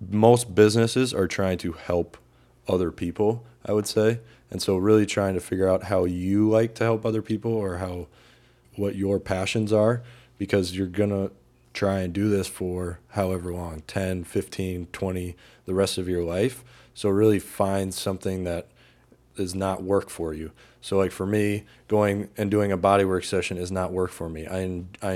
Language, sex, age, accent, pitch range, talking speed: English, male, 20-39, American, 90-105 Hz, 185 wpm